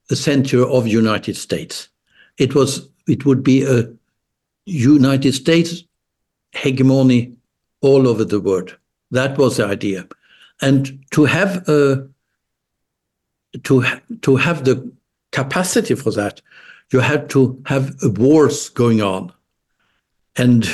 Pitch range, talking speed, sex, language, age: 115-150 Hz, 115 wpm, male, English, 60-79